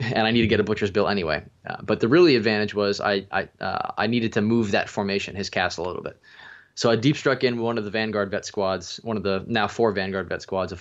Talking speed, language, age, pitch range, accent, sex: 265 wpm, English, 20-39, 100-115 Hz, American, male